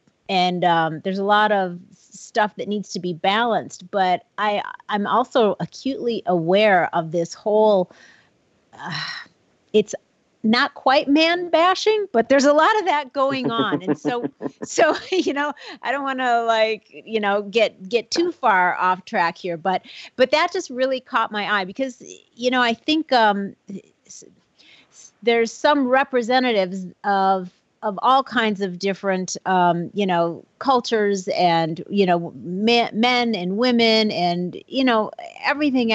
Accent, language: American, English